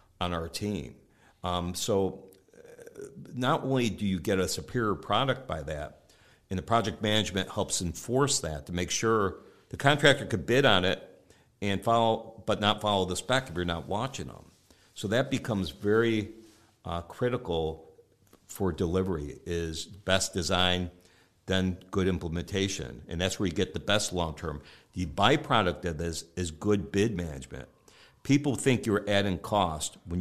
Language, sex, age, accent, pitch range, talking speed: English, male, 60-79, American, 90-110 Hz, 160 wpm